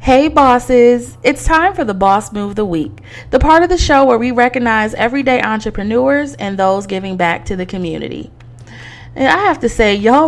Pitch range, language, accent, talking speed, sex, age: 195-270 Hz, English, American, 200 wpm, female, 20-39